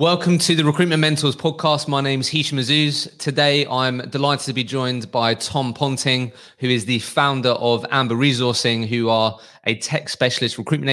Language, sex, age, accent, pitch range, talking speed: English, male, 20-39, British, 115-140 Hz, 180 wpm